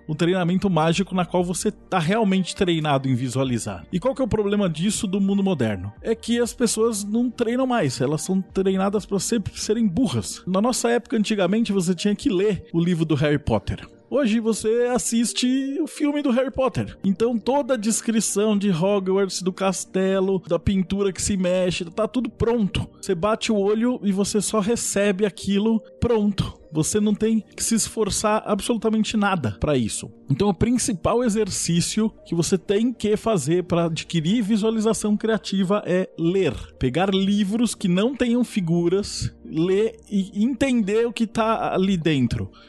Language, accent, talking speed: Portuguese, Brazilian, 170 wpm